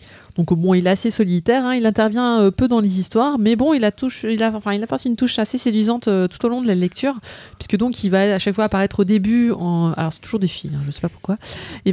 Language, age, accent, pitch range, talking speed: French, 30-49, French, 175-225 Hz, 285 wpm